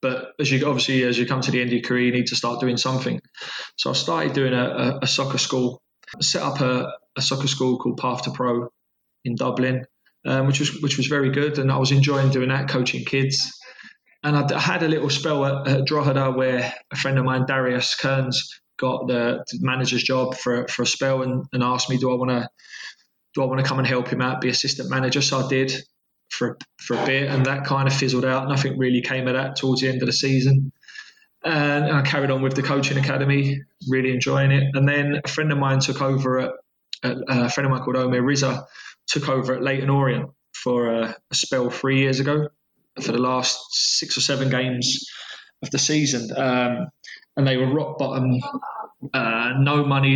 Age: 20-39